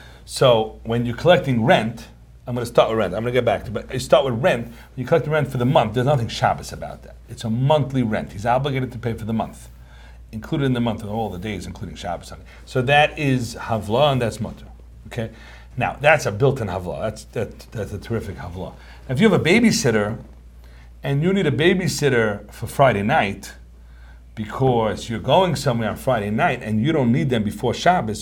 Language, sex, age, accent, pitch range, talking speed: English, male, 40-59, American, 80-125 Hz, 215 wpm